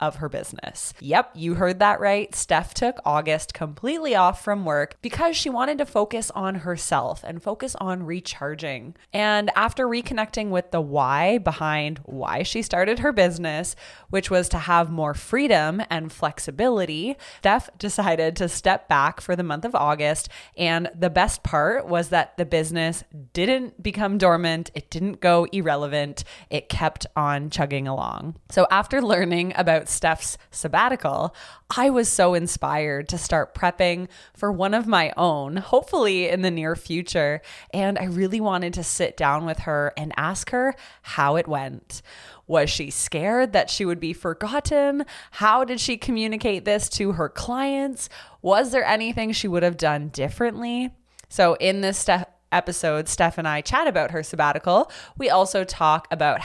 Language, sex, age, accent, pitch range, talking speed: English, female, 20-39, American, 155-210 Hz, 165 wpm